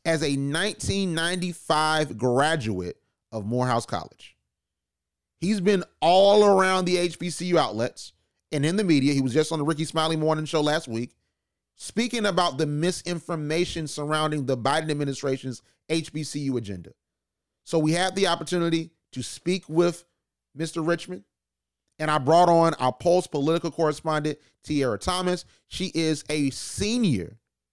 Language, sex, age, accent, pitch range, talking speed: English, male, 30-49, American, 130-165 Hz, 135 wpm